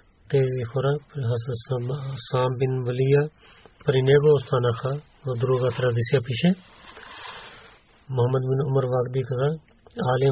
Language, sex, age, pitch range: Bulgarian, male, 40-59, 125-145 Hz